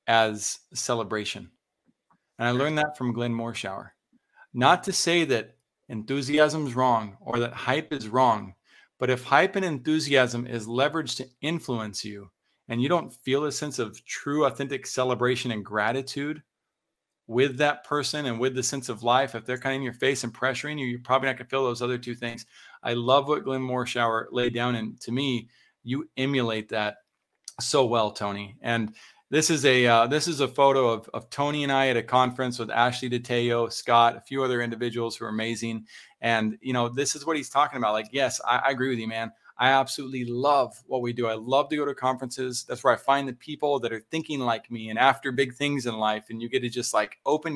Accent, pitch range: American, 115-140 Hz